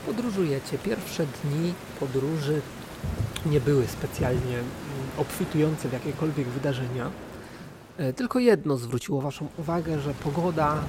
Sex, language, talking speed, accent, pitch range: male, Polish, 100 wpm, native, 135-165 Hz